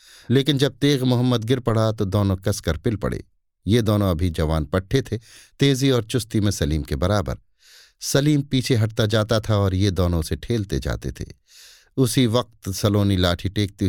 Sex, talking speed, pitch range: male, 175 wpm, 95-125 Hz